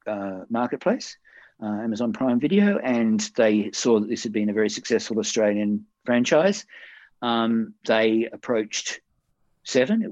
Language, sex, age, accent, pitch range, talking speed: English, male, 50-69, Australian, 110-140 Hz, 135 wpm